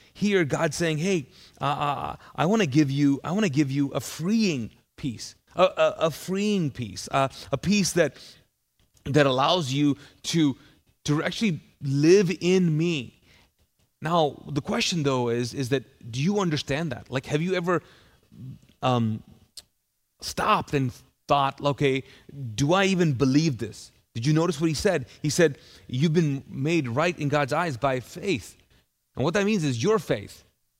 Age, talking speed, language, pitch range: 30-49, 165 wpm, English, 130-165 Hz